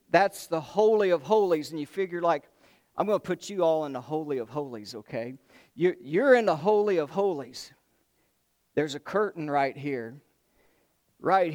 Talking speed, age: 170 wpm, 50-69